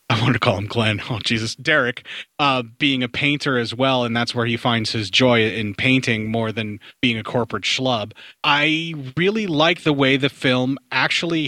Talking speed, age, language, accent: 200 wpm, 30-49, English, American